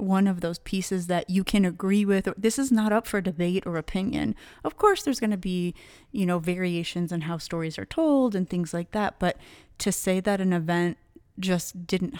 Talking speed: 210 wpm